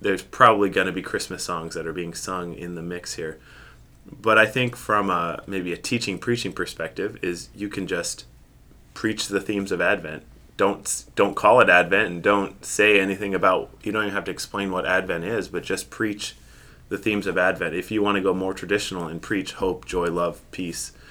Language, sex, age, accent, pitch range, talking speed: English, male, 20-39, American, 85-100 Hz, 205 wpm